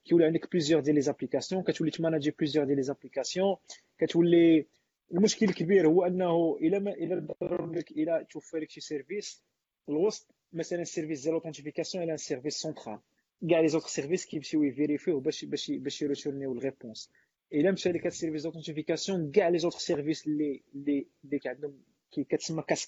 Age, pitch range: 20-39, 150-170 Hz